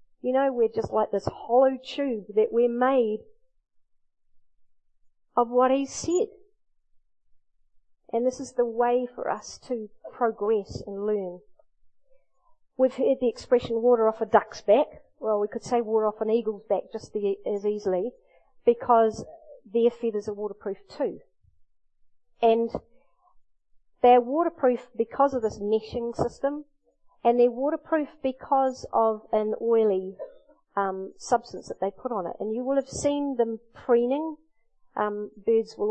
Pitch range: 215-265 Hz